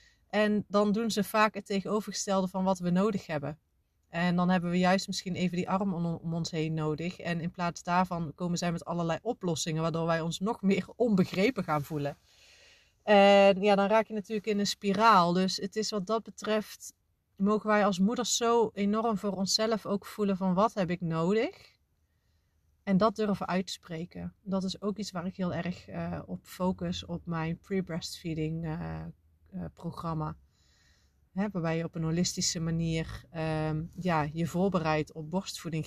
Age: 30-49